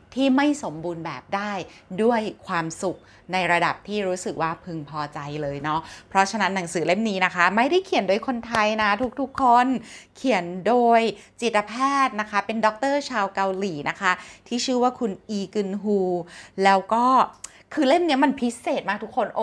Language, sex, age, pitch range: Thai, female, 30-49, 190-250 Hz